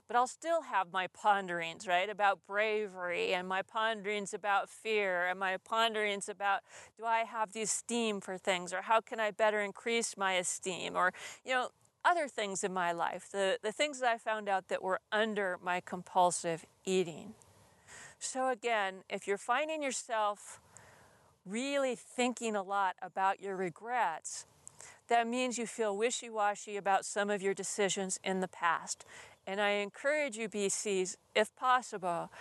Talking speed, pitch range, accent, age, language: 165 wpm, 190-235 Hz, American, 40-59, English